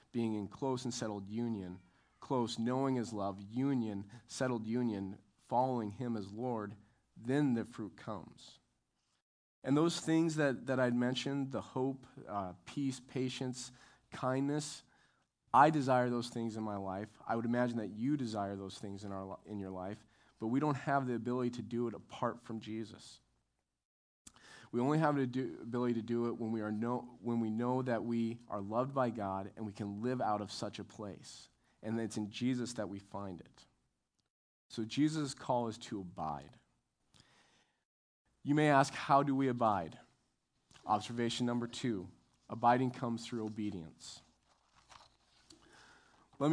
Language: English